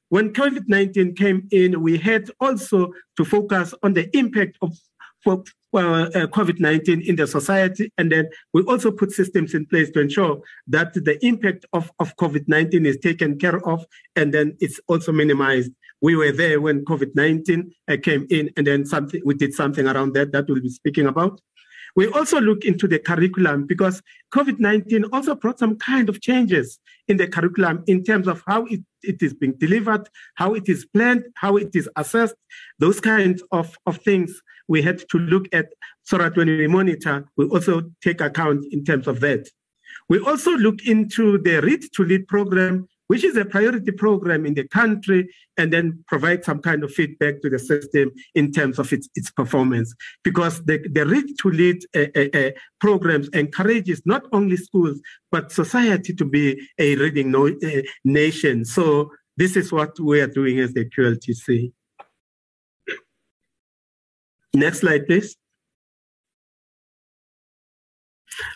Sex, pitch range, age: male, 150-200 Hz, 50-69